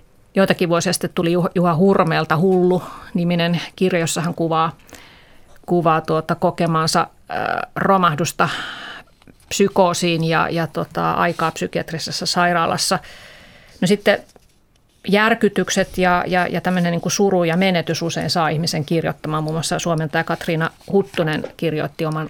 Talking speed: 120 wpm